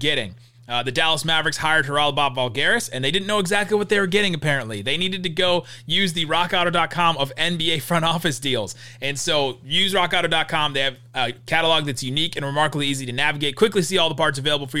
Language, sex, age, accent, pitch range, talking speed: English, male, 30-49, American, 135-175 Hz, 215 wpm